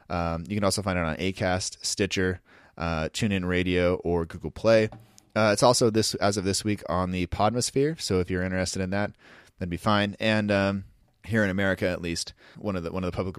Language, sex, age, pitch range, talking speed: English, male, 20-39, 90-105 Hz, 220 wpm